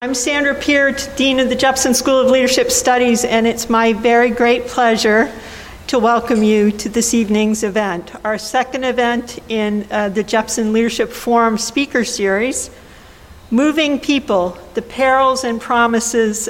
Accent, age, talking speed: American, 50-69, 150 wpm